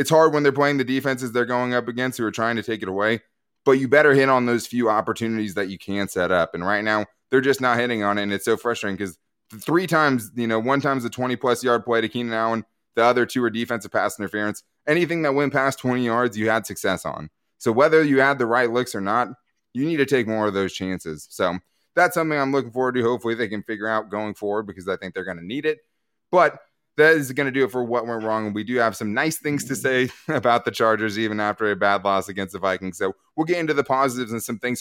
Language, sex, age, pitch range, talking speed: English, male, 20-39, 105-135 Hz, 265 wpm